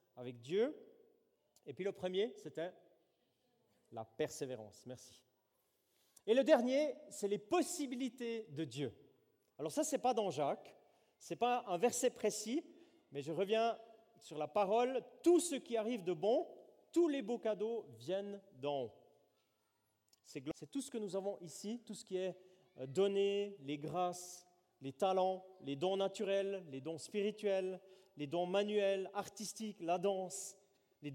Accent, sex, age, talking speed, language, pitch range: French, male, 40-59, 155 wpm, French, 170-225 Hz